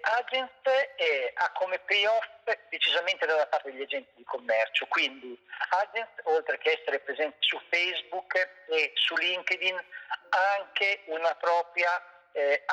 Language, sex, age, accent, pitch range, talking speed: Italian, male, 50-69, native, 150-245 Hz, 125 wpm